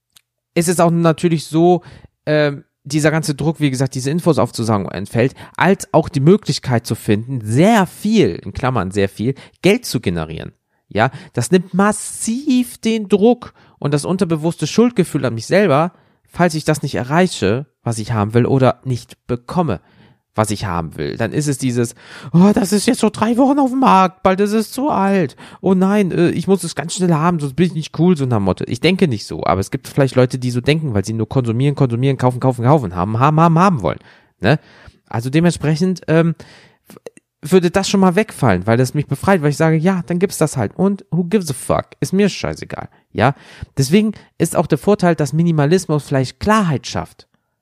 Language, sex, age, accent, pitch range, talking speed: German, male, 40-59, German, 125-185 Hz, 200 wpm